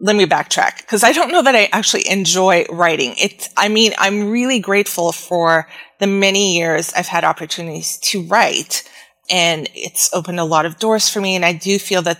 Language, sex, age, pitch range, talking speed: English, female, 30-49, 175-210 Hz, 200 wpm